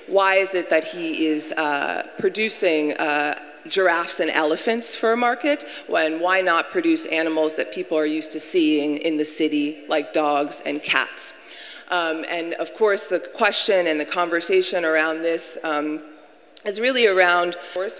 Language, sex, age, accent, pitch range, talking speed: English, female, 40-59, American, 155-190 Hz, 165 wpm